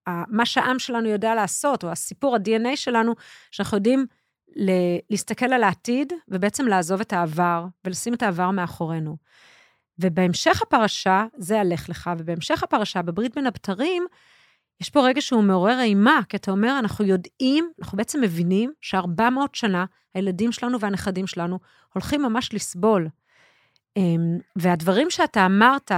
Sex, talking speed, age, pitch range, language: female, 135 wpm, 30-49, 185-245 Hz, Hebrew